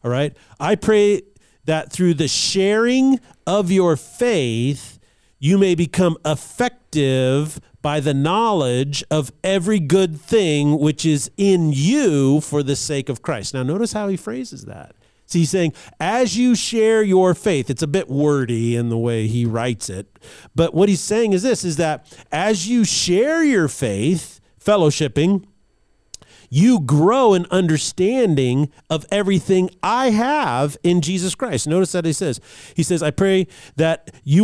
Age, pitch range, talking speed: 40-59, 145-200 Hz, 155 wpm